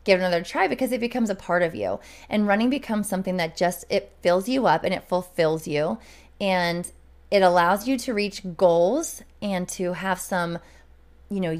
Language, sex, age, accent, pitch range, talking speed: English, female, 20-39, American, 160-200 Hz, 195 wpm